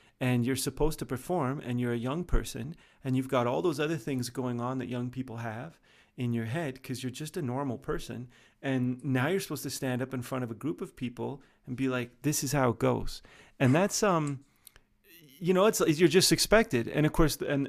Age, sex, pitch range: 30-49, male, 125-150 Hz